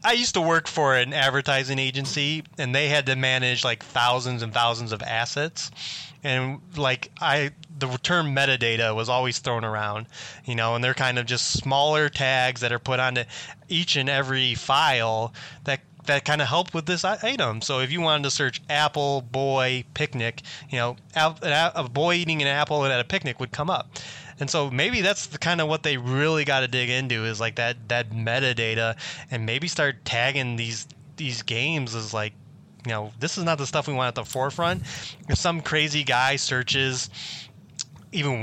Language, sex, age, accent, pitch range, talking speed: English, male, 20-39, American, 120-150 Hz, 190 wpm